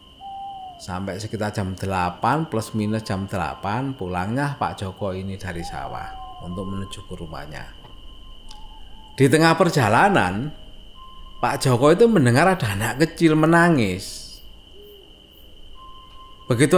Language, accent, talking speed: Indonesian, native, 105 wpm